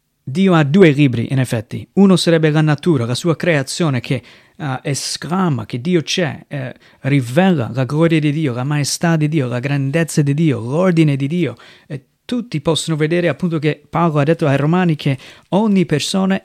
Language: Italian